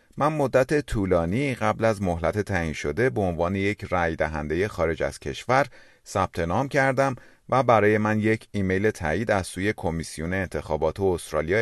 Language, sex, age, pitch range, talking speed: Persian, male, 30-49, 85-120 Hz, 155 wpm